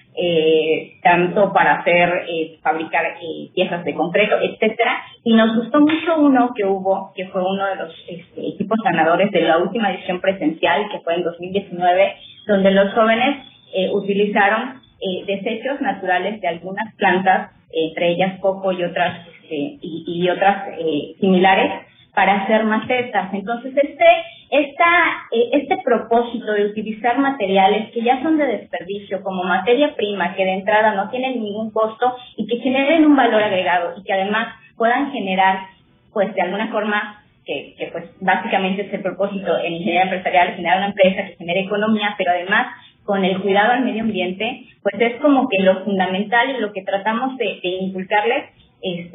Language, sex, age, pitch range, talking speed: Spanish, female, 30-49, 180-225 Hz, 165 wpm